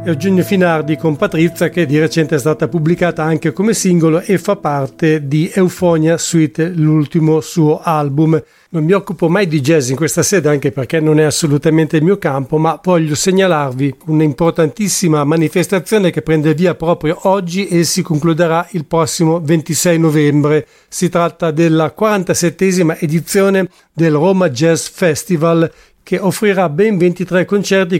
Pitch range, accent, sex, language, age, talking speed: 160-185 Hz, Italian, male, English, 50-69, 150 wpm